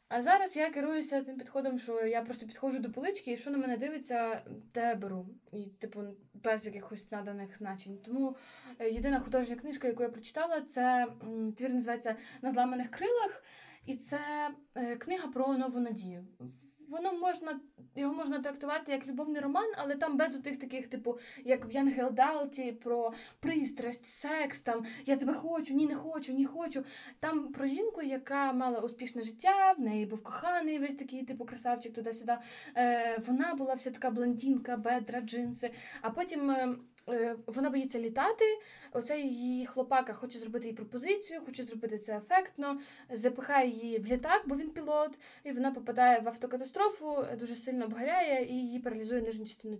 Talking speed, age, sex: 160 wpm, 20-39, female